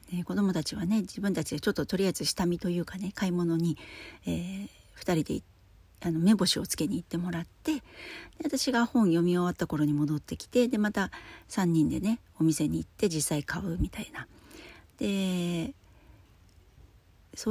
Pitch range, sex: 155-200 Hz, female